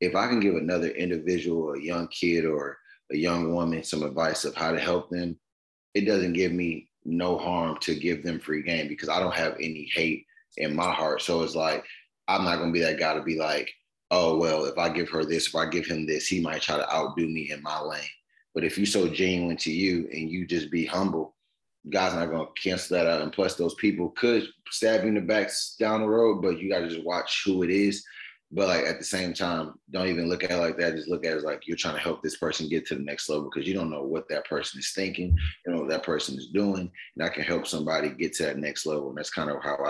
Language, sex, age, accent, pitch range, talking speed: English, male, 20-39, American, 80-90 Hz, 265 wpm